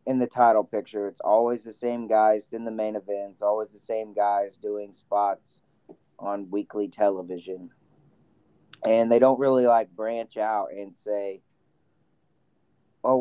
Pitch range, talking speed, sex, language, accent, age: 105-125 Hz, 145 wpm, male, English, American, 30-49